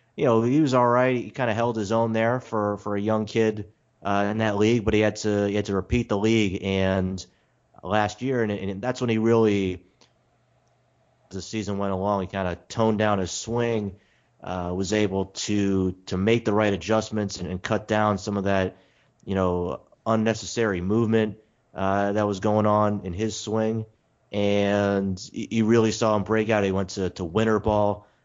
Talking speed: 200 wpm